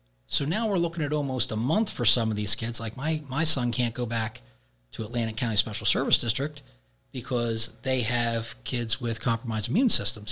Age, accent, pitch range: 40-59, American, 110-145 Hz